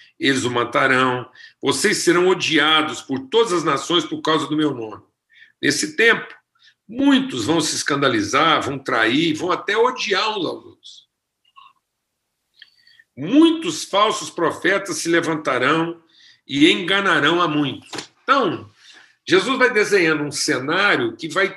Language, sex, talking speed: Portuguese, male, 125 wpm